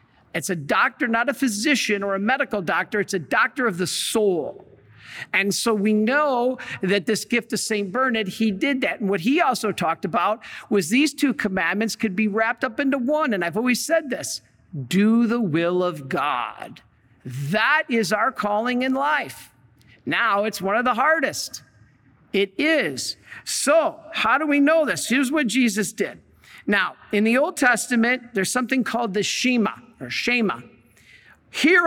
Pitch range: 180-250 Hz